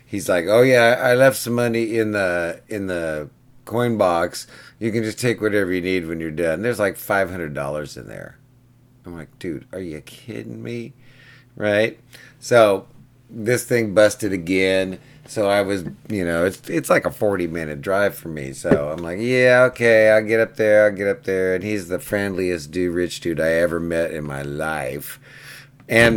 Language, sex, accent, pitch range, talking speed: English, male, American, 80-115 Hz, 190 wpm